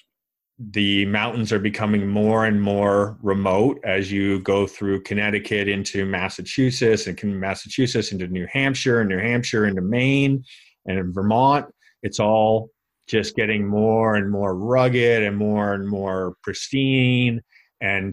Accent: American